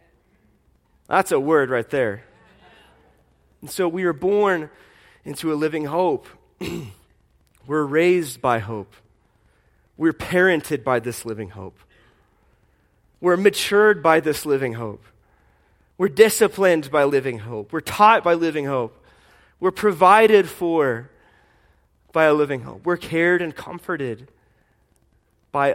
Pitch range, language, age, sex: 110-165 Hz, English, 30-49, male